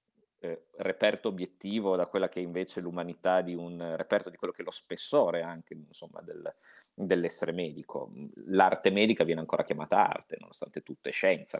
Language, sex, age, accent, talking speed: Italian, male, 30-49, native, 175 wpm